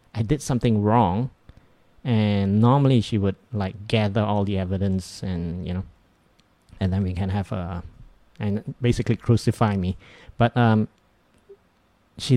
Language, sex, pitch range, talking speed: English, male, 100-125 Hz, 140 wpm